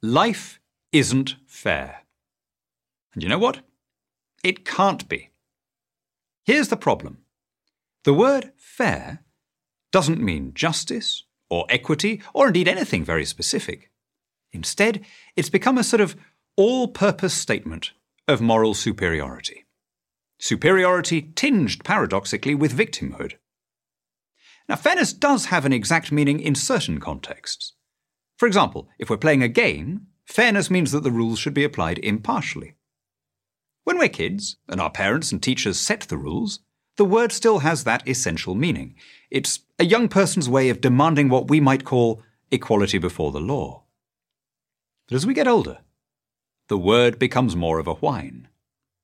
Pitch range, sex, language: 125-200 Hz, male, English